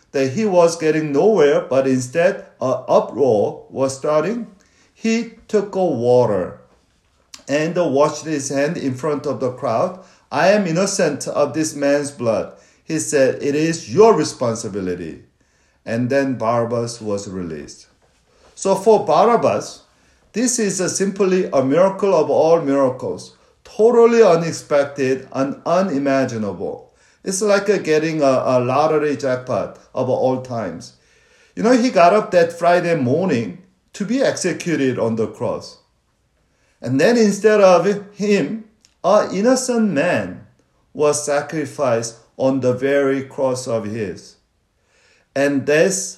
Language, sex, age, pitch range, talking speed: English, male, 50-69, 130-205 Hz, 125 wpm